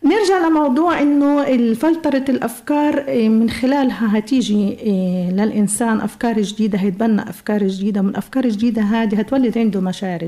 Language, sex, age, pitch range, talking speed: Arabic, female, 40-59, 210-270 Hz, 125 wpm